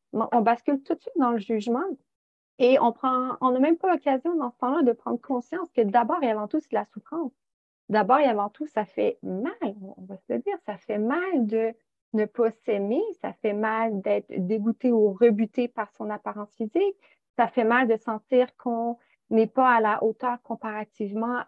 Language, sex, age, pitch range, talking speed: French, female, 30-49, 220-260 Hz, 200 wpm